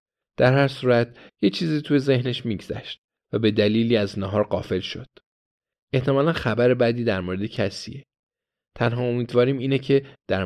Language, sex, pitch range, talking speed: Persian, male, 100-130 Hz, 150 wpm